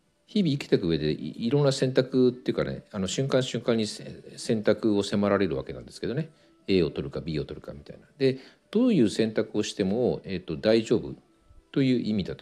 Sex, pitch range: male, 85-130 Hz